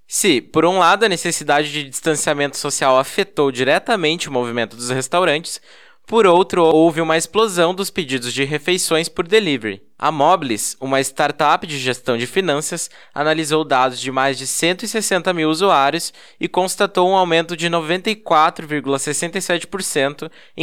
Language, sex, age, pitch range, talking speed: Portuguese, male, 10-29, 145-185 Hz, 140 wpm